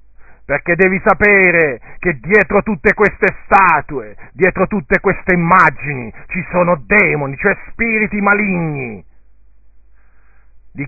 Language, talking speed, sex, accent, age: Italian, 105 wpm, male, native, 50-69